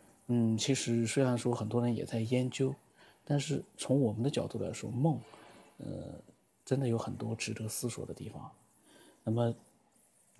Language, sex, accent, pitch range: Chinese, male, native, 110-140 Hz